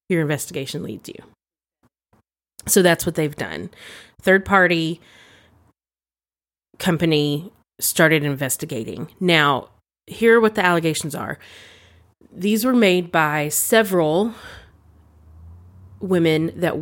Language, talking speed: English, 95 wpm